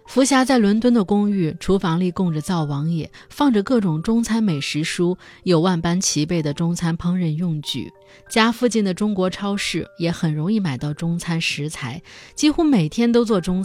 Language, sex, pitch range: Chinese, female, 165-235 Hz